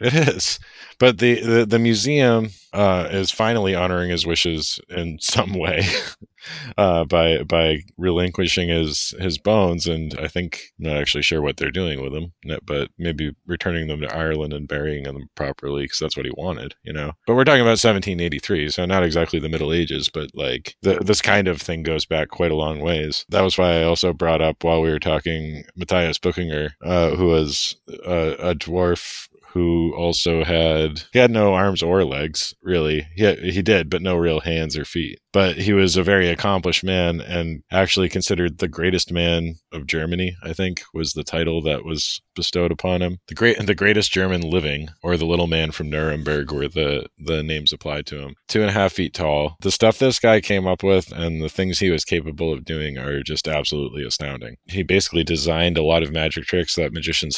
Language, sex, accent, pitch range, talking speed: English, male, American, 80-90 Hz, 205 wpm